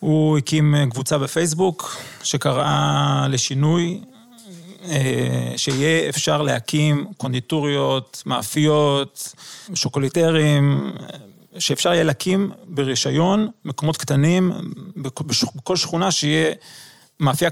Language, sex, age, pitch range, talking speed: Hebrew, male, 30-49, 135-165 Hz, 75 wpm